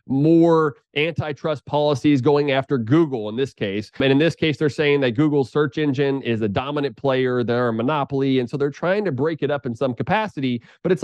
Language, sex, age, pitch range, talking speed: English, male, 30-49, 125-150 Hz, 210 wpm